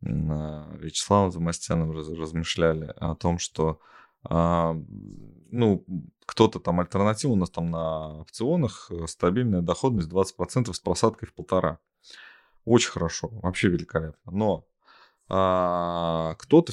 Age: 20-39